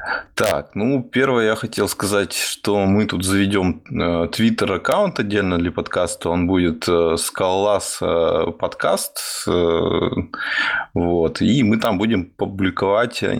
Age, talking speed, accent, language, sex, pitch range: 20-39, 105 wpm, native, Russian, male, 90-105 Hz